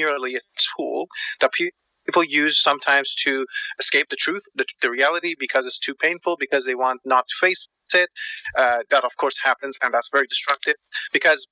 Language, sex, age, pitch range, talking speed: English, male, 30-49, 125-180 Hz, 175 wpm